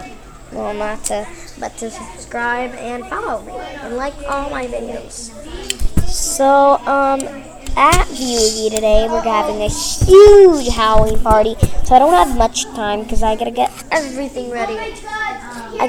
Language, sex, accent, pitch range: English, male, American, 235-325 Hz